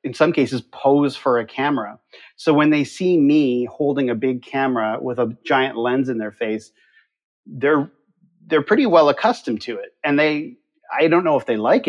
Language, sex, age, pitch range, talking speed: English, male, 40-59, 120-155 Hz, 190 wpm